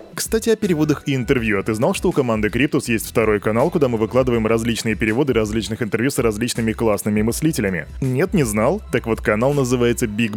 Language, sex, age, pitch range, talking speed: Russian, male, 20-39, 110-140 Hz, 195 wpm